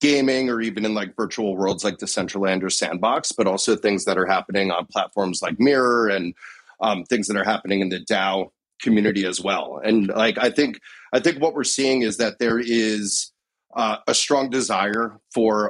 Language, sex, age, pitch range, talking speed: English, male, 30-49, 100-125 Hz, 195 wpm